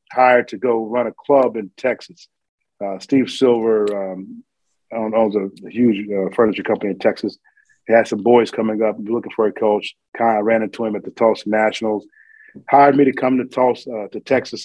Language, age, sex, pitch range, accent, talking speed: English, 40-59, male, 105-125 Hz, American, 200 wpm